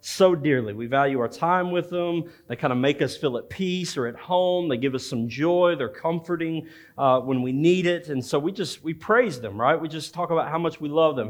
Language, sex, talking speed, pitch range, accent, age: English, male, 255 wpm, 130-170 Hz, American, 40-59